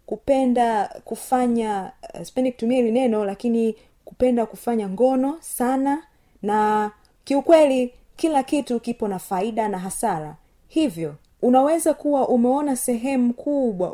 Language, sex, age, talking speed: Swahili, female, 30-49, 110 wpm